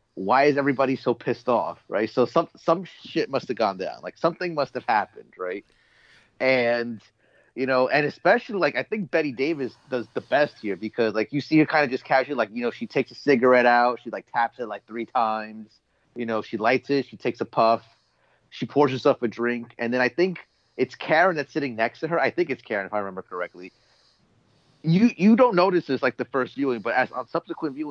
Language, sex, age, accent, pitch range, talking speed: English, male, 30-49, American, 120-150 Hz, 225 wpm